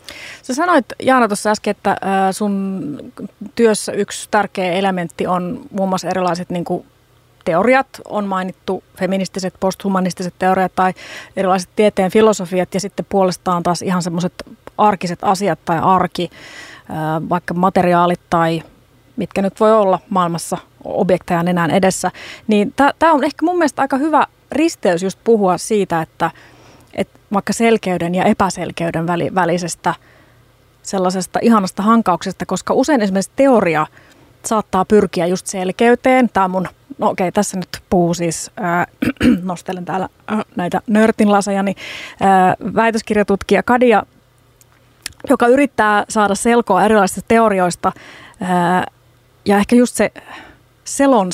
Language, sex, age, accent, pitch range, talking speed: Finnish, female, 30-49, native, 180-215 Hz, 125 wpm